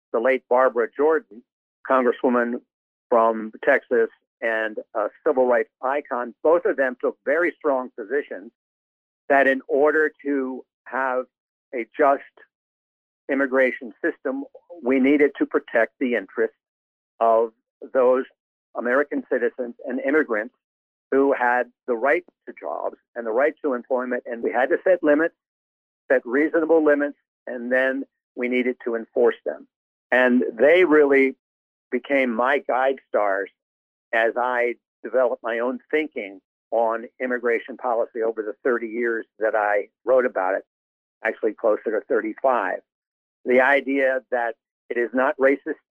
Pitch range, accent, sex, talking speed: 120-150 Hz, American, male, 135 wpm